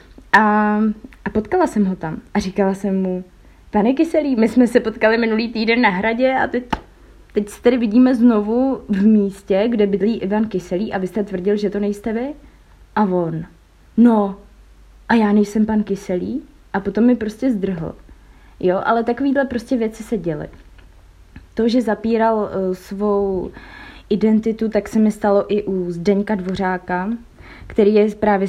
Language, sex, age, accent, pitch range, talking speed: Czech, female, 20-39, native, 185-220 Hz, 160 wpm